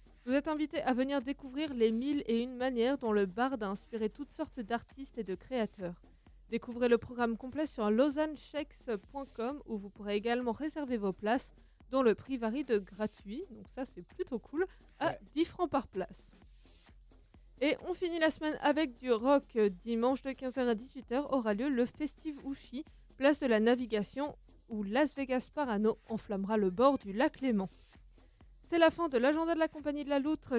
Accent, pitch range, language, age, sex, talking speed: French, 220-285 Hz, French, 20-39, female, 185 wpm